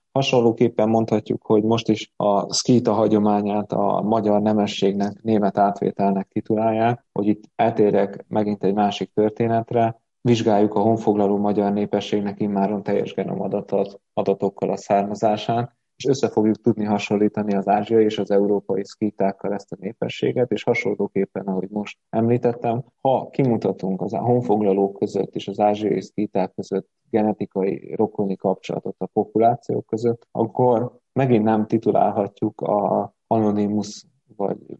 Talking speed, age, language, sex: 125 wpm, 20-39, Hungarian, male